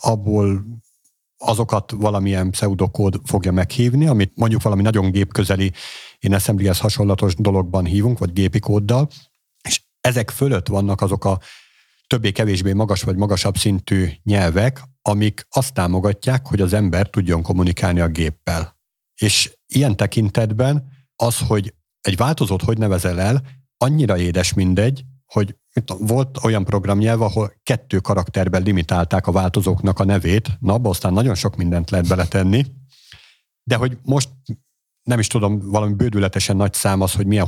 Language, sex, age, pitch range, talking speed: Hungarian, male, 50-69, 95-120 Hz, 140 wpm